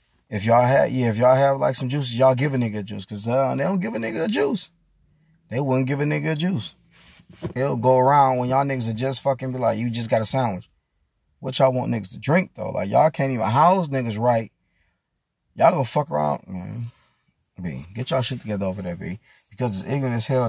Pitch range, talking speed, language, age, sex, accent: 105-140 Hz, 240 wpm, English, 20-39, male, American